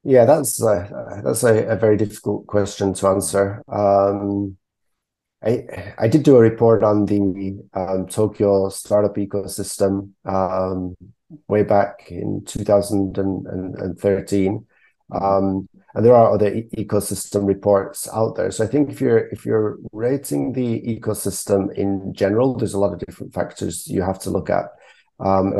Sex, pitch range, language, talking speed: male, 95-105 Hz, English, 145 wpm